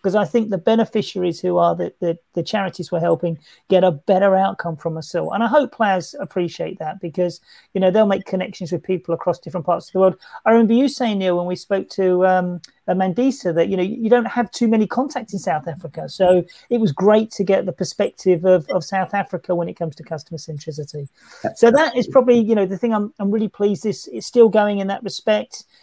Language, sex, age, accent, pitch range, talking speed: English, male, 40-59, British, 180-220 Hz, 230 wpm